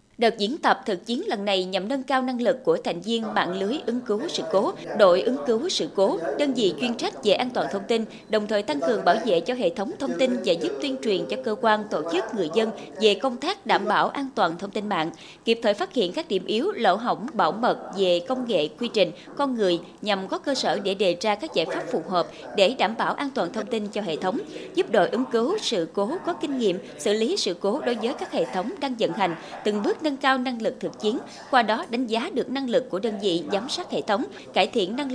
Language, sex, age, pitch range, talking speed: Vietnamese, female, 20-39, 190-260 Hz, 260 wpm